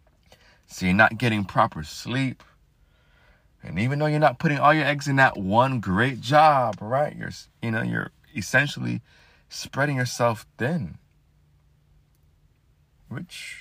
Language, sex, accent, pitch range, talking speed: English, male, American, 95-130 Hz, 125 wpm